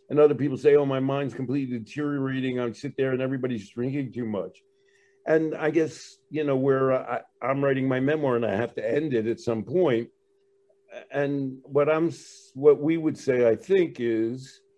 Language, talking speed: English, 190 wpm